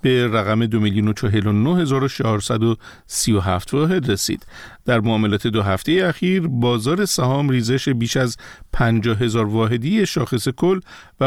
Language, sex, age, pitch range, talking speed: Persian, male, 50-69, 115-155 Hz, 145 wpm